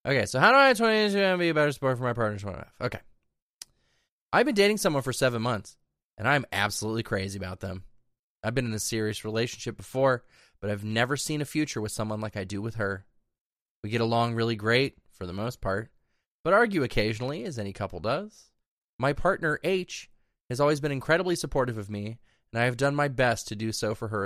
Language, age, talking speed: English, 20-39, 210 wpm